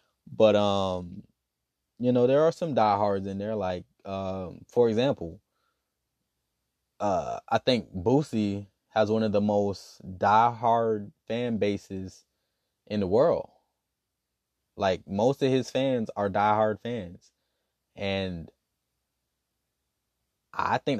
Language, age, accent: English, 20-39, American